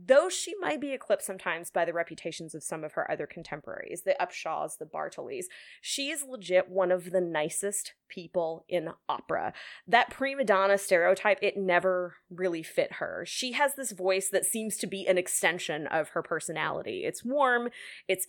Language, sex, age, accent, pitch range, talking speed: English, female, 20-39, American, 180-250 Hz, 175 wpm